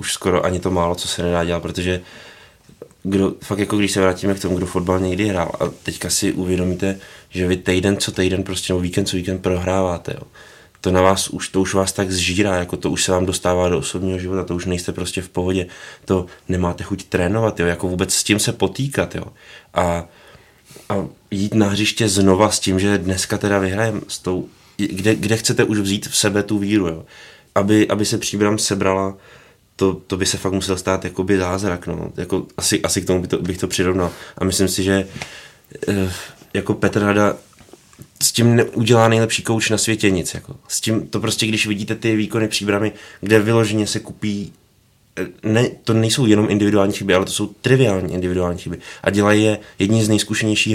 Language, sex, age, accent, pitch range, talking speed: Czech, male, 20-39, native, 95-105 Hz, 205 wpm